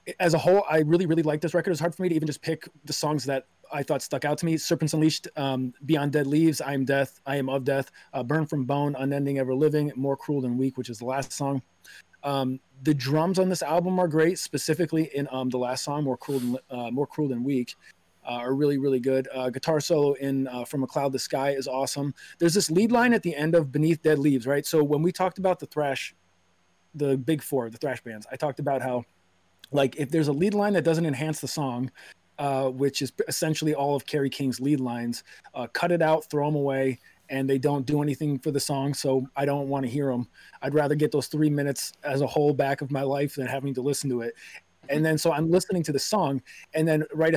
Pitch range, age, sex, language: 135-160 Hz, 30-49, male, English